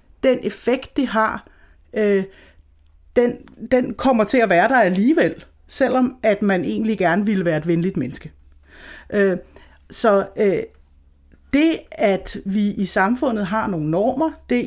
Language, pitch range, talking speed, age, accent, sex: Danish, 175-245 Hz, 125 wpm, 60-79, native, female